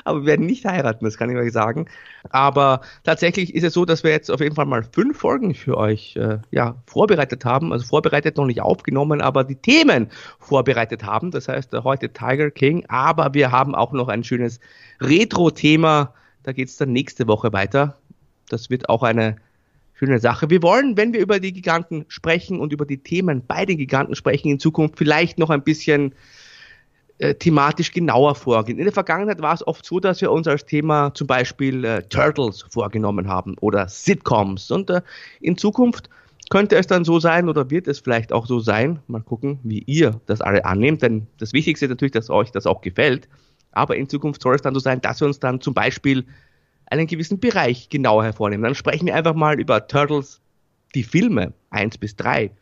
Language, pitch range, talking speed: German, 120-160 Hz, 200 wpm